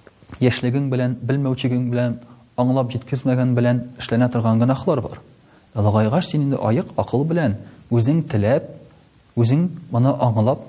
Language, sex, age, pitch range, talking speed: Russian, male, 40-59, 110-140 Hz, 135 wpm